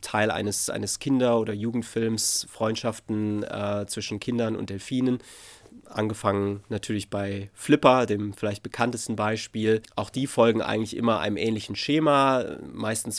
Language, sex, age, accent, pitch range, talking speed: German, male, 30-49, German, 105-120 Hz, 130 wpm